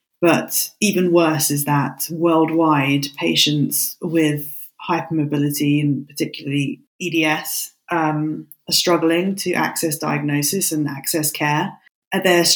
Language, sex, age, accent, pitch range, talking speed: English, female, 20-39, British, 150-180 Hz, 110 wpm